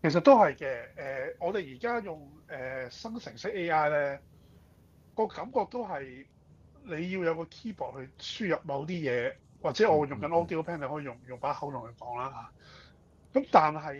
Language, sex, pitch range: Chinese, male, 130-180 Hz